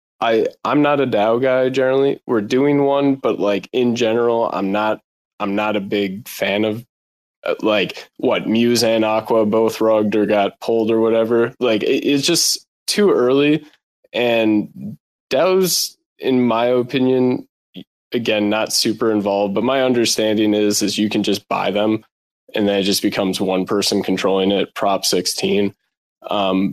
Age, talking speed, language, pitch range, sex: 20-39, 155 wpm, English, 100-120 Hz, male